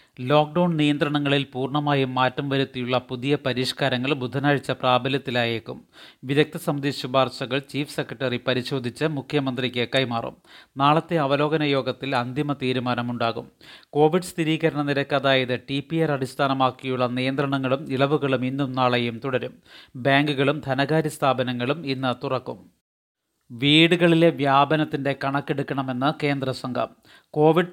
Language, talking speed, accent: Malayalam, 95 wpm, native